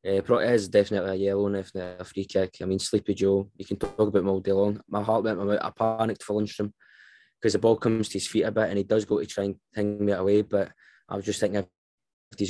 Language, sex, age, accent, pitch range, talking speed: English, male, 20-39, British, 100-110 Hz, 270 wpm